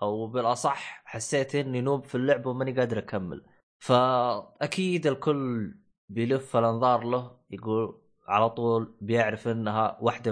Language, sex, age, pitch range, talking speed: Arabic, male, 20-39, 115-160 Hz, 120 wpm